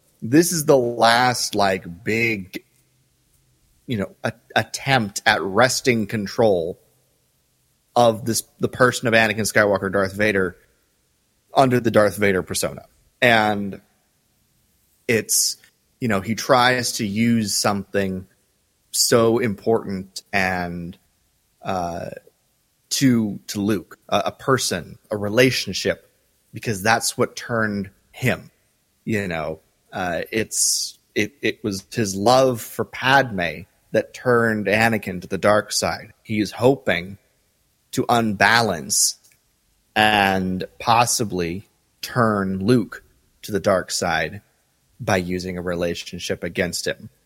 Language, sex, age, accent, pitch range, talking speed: English, male, 30-49, American, 95-115 Hz, 115 wpm